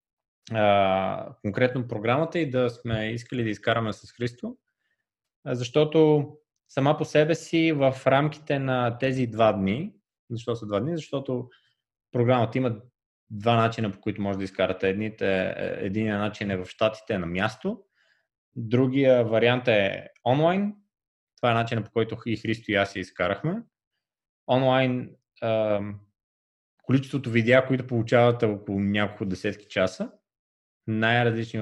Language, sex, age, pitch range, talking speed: Bulgarian, male, 20-39, 105-130 Hz, 125 wpm